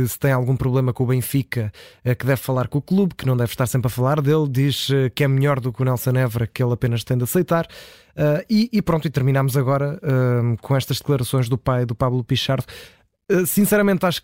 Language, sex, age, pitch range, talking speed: Portuguese, male, 20-39, 130-160 Hz, 230 wpm